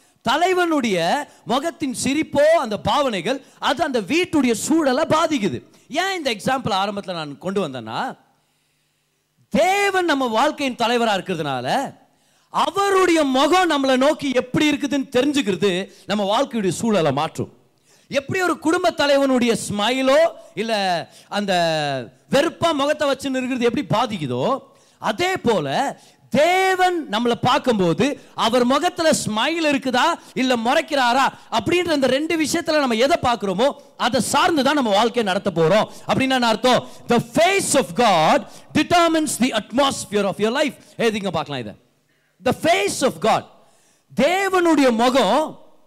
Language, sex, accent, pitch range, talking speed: Tamil, male, native, 215-310 Hz, 70 wpm